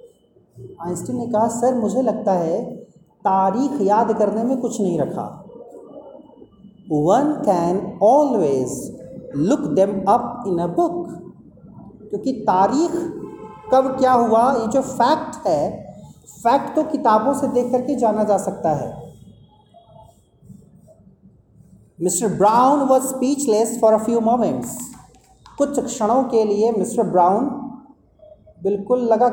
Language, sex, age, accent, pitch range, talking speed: Hindi, male, 40-59, native, 215-280 Hz, 115 wpm